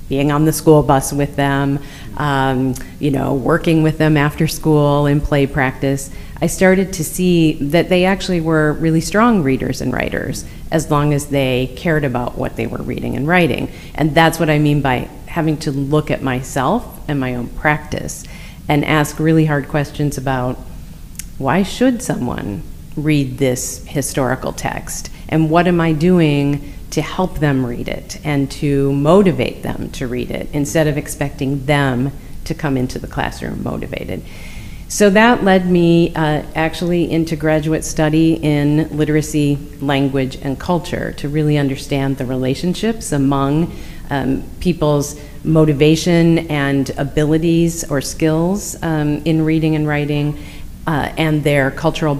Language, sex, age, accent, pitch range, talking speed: English, female, 40-59, American, 140-160 Hz, 155 wpm